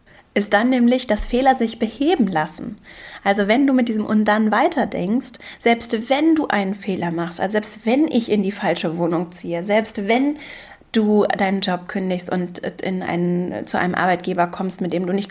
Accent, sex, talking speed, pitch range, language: German, female, 190 wpm, 195-235 Hz, German